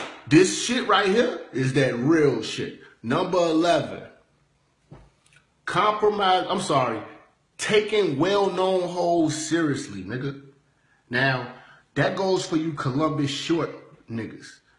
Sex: male